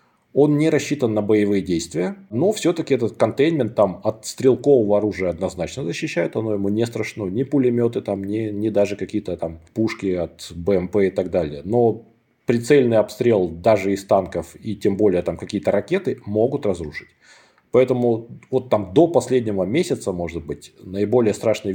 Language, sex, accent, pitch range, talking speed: Russian, male, native, 95-120 Hz, 155 wpm